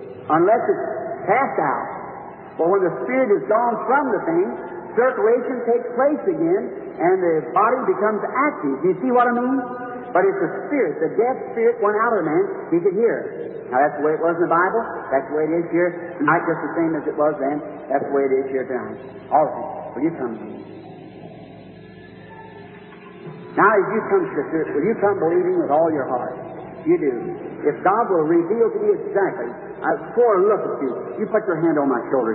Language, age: English, 60-79